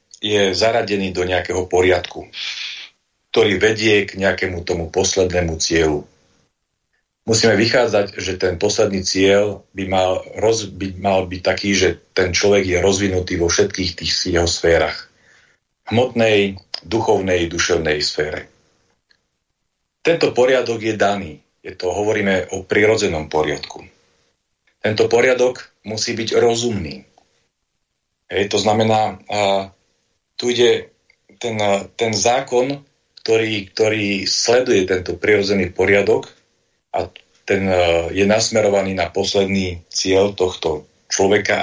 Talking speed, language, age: 110 wpm, Slovak, 40-59